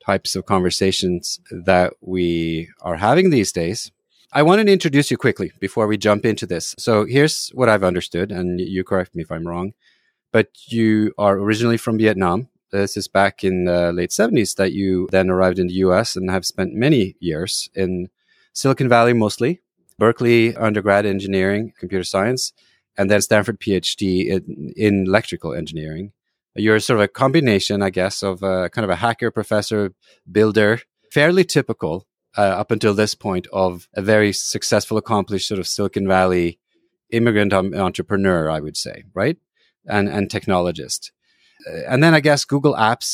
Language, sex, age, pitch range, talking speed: English, male, 30-49, 95-110 Hz, 170 wpm